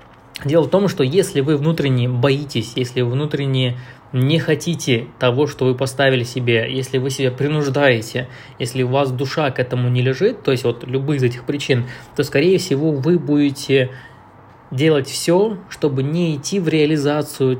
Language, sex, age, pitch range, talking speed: Russian, male, 20-39, 130-160 Hz, 165 wpm